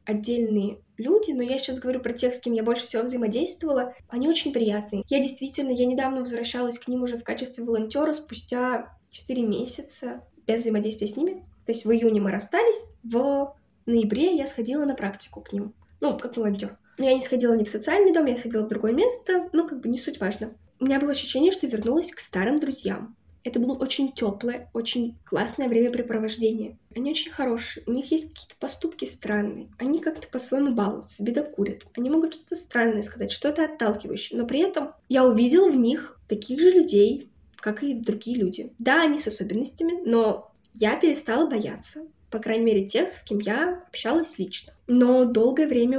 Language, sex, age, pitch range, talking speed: Russian, female, 10-29, 220-280 Hz, 185 wpm